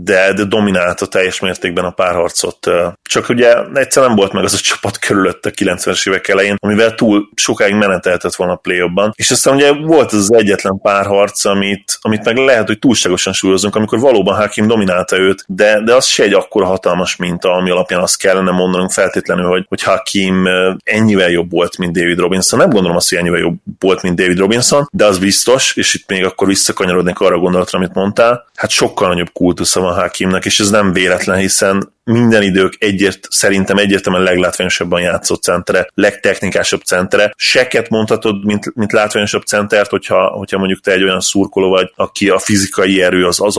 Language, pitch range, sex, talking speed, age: Hungarian, 90-105 Hz, male, 185 wpm, 30-49